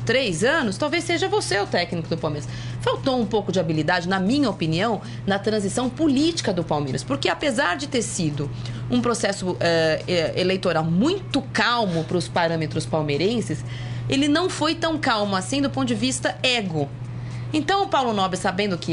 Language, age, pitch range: Portuguese, 30-49, 160-240 Hz